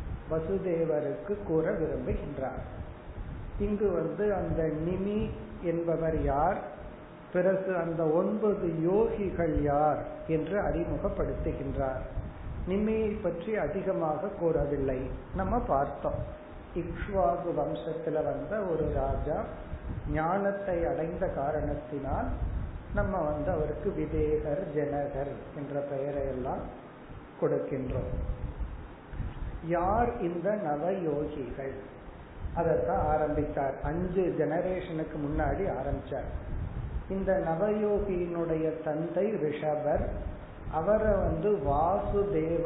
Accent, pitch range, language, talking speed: native, 145-185 Hz, Tamil, 50 wpm